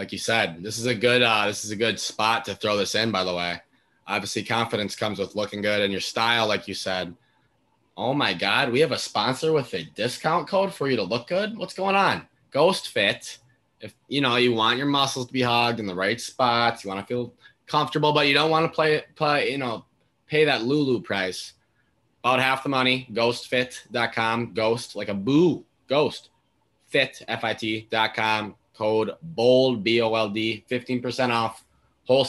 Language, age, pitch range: English, 20-39, 110-135 Hz